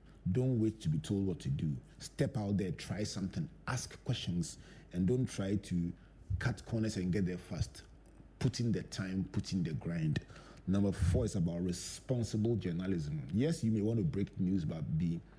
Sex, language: male, English